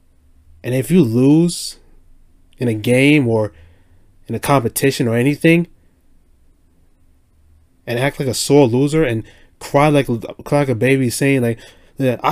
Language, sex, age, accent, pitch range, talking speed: English, male, 20-39, American, 90-135 Hz, 140 wpm